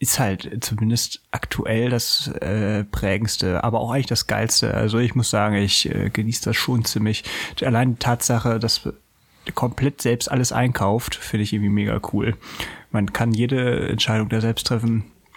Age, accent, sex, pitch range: 30-49, German, male, 115-140 Hz